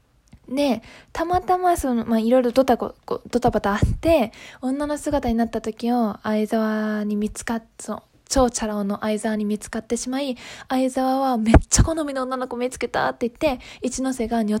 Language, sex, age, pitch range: Japanese, female, 10-29, 220-265 Hz